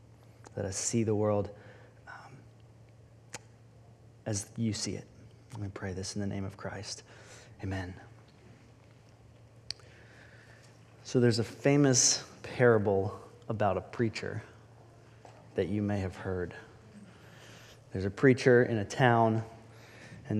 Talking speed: 120 wpm